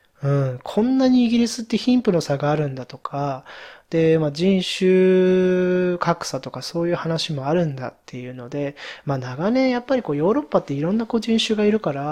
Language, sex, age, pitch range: Japanese, male, 20-39, 145-205 Hz